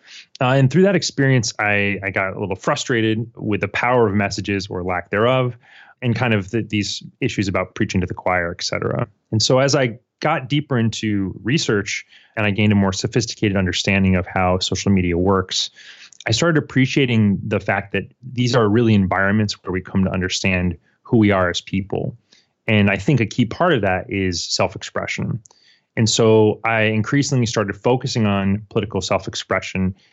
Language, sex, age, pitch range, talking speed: English, male, 30-49, 95-115 Hz, 175 wpm